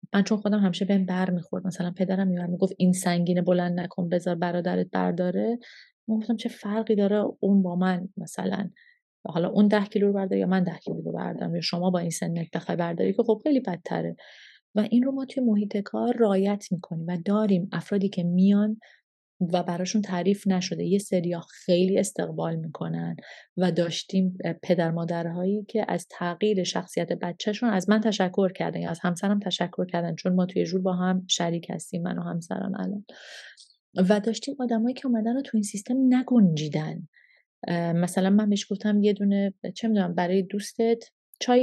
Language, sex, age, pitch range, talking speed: Persian, female, 30-49, 175-215 Hz, 175 wpm